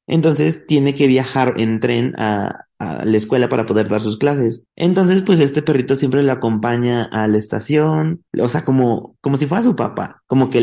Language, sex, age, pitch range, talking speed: Spanish, male, 30-49, 115-150 Hz, 200 wpm